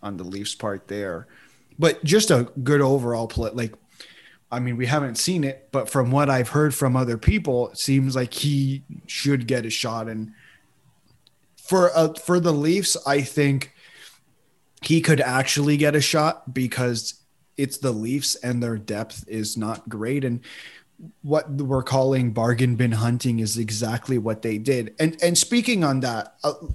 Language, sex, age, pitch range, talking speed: English, male, 20-39, 120-150 Hz, 170 wpm